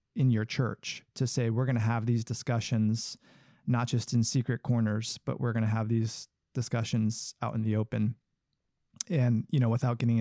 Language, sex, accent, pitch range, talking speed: English, male, American, 115-135 Hz, 190 wpm